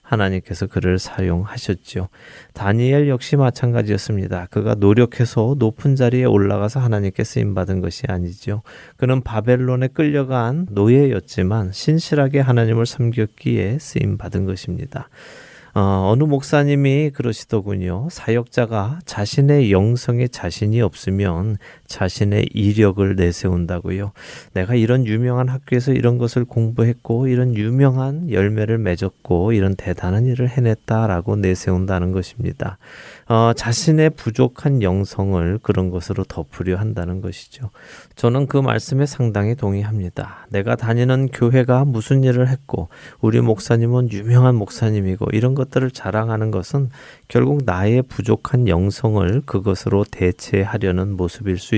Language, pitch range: Korean, 100-125 Hz